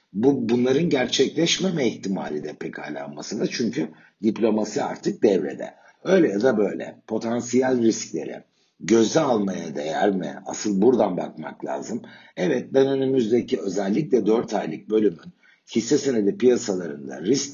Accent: native